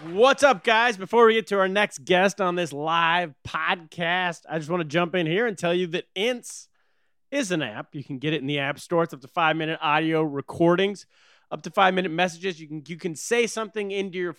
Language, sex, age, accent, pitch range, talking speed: English, male, 30-49, American, 155-200 Hz, 230 wpm